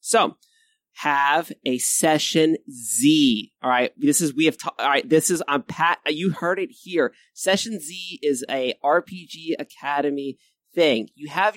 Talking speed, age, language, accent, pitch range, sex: 160 wpm, 30-49, English, American, 145-215 Hz, male